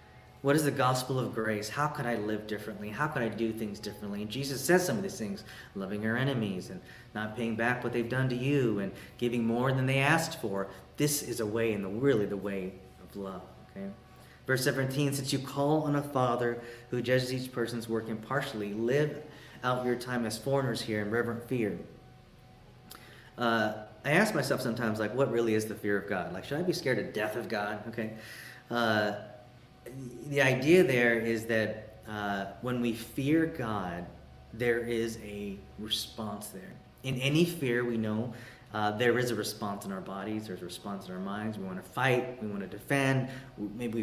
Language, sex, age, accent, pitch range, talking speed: English, male, 30-49, American, 110-130 Hz, 200 wpm